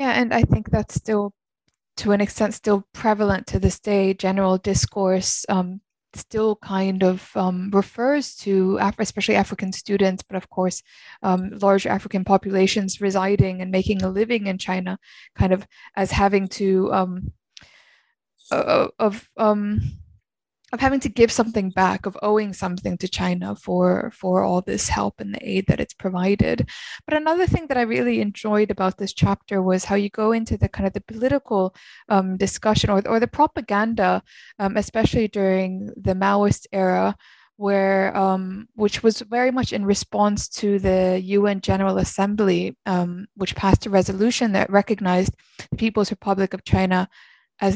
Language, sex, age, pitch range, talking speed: English, female, 20-39, 190-220 Hz, 165 wpm